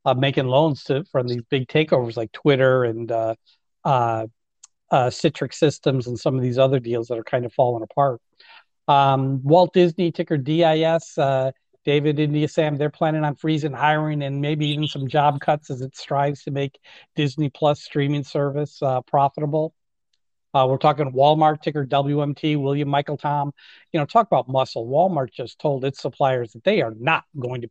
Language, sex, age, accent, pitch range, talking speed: English, male, 50-69, American, 130-150 Hz, 180 wpm